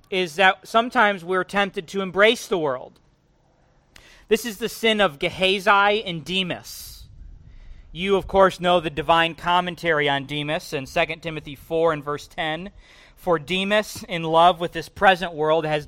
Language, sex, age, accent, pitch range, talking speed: English, male, 40-59, American, 145-185 Hz, 160 wpm